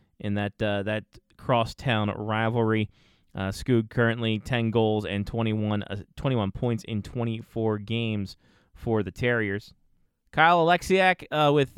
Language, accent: English, American